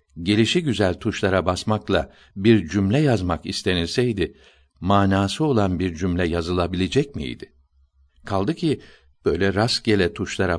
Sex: male